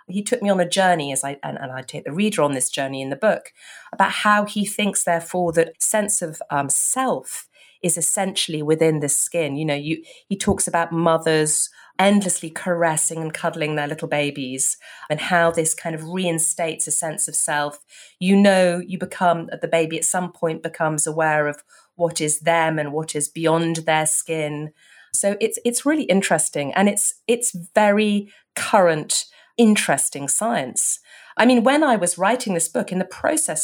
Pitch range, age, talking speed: 150-185 Hz, 30-49, 185 wpm